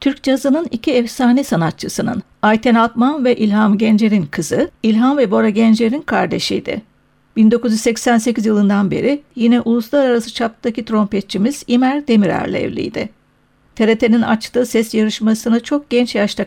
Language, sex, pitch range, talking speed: Turkish, female, 220-260 Hz, 120 wpm